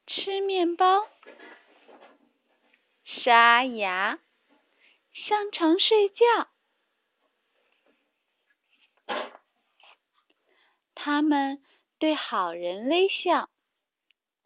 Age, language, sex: 30-49, Chinese, female